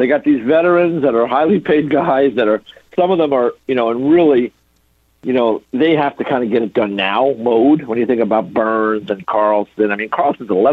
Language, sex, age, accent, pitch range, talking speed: English, male, 60-79, American, 110-140 Hz, 235 wpm